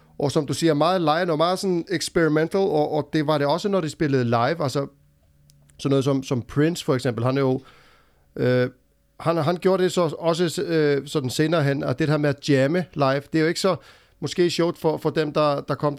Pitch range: 140-170 Hz